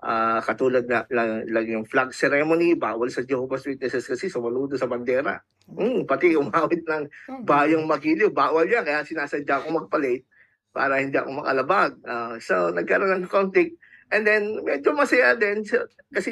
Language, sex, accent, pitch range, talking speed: Filipino, male, native, 120-170 Hz, 165 wpm